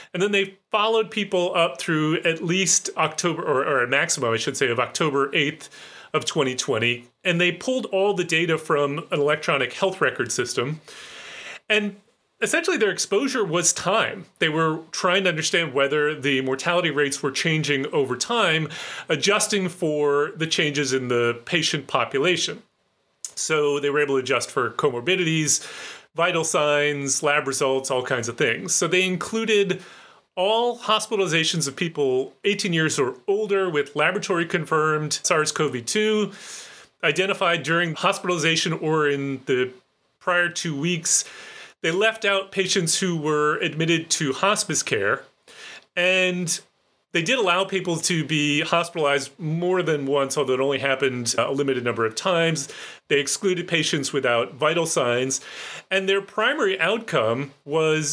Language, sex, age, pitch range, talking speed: English, male, 30-49, 145-190 Hz, 145 wpm